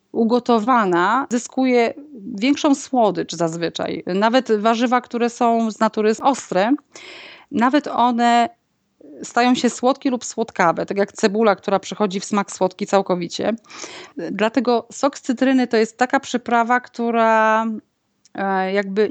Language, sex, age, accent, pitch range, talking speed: Polish, female, 30-49, native, 205-250 Hz, 120 wpm